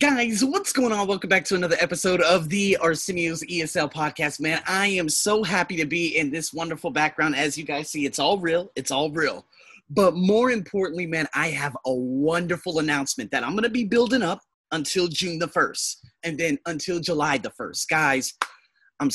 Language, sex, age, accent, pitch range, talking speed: English, male, 30-49, American, 140-180 Hz, 195 wpm